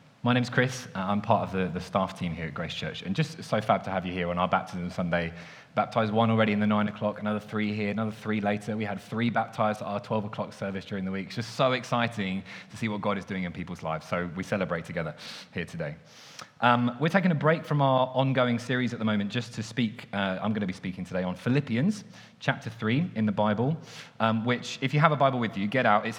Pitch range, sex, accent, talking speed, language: 100-130 Hz, male, British, 255 wpm, English